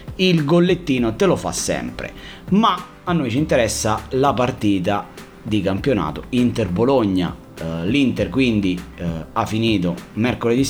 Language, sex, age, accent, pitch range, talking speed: Italian, male, 30-49, native, 95-120 Hz, 130 wpm